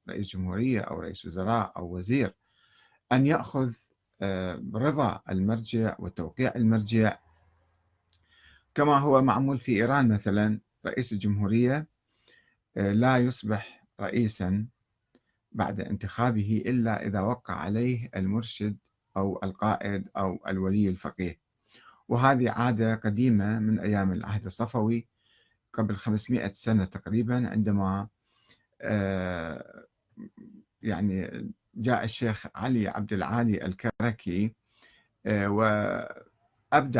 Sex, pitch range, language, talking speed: male, 100-120 Hz, Arabic, 90 wpm